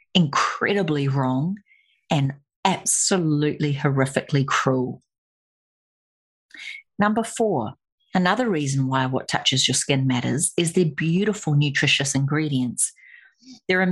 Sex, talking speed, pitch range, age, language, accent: female, 100 wpm, 135-180 Hz, 40-59, English, Australian